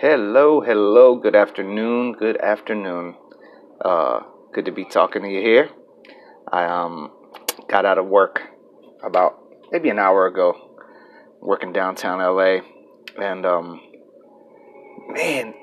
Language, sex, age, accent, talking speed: English, male, 30-49, American, 120 wpm